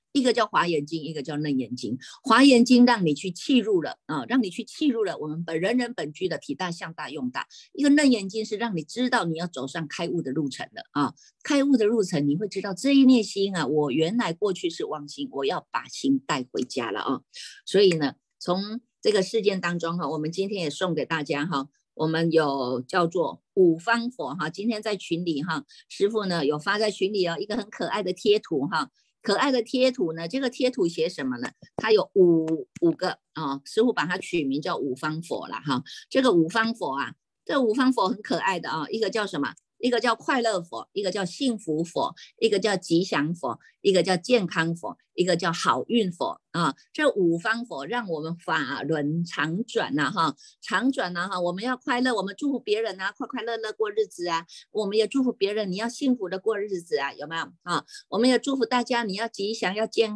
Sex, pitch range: female, 170-245 Hz